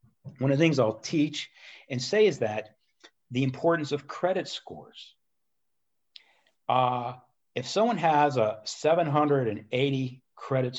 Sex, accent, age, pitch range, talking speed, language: male, American, 50-69, 120-150 Hz, 120 wpm, English